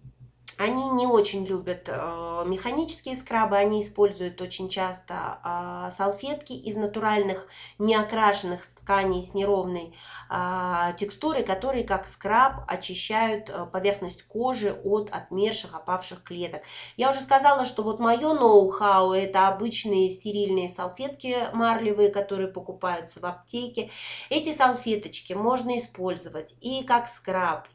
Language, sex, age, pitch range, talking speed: Russian, female, 30-49, 180-215 Hz, 120 wpm